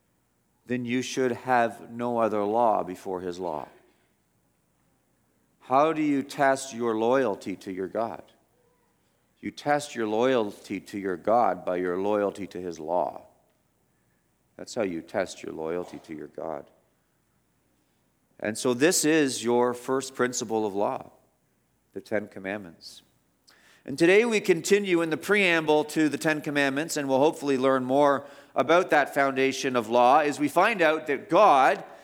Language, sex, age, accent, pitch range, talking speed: English, male, 50-69, American, 125-190 Hz, 150 wpm